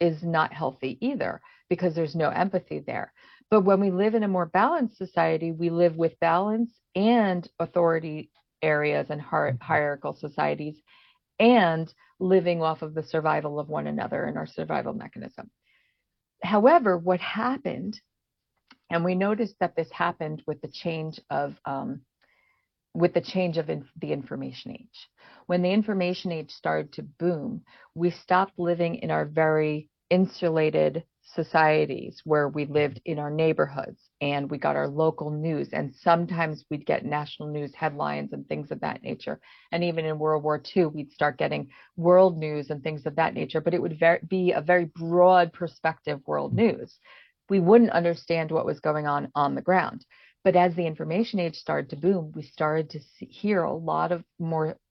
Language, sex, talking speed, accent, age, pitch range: English, female, 170 wpm, American, 50-69, 155-180 Hz